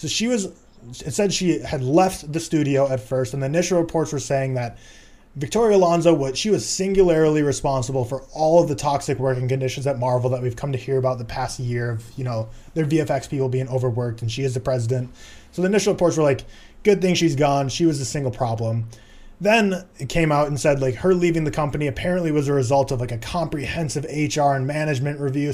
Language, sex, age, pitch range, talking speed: English, male, 20-39, 130-160 Hz, 225 wpm